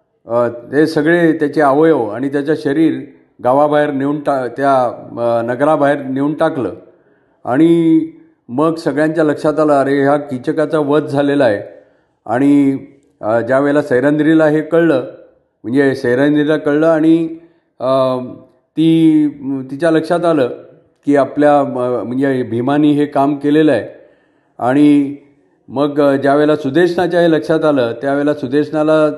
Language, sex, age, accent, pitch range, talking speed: Marathi, male, 50-69, native, 135-155 Hz, 85 wpm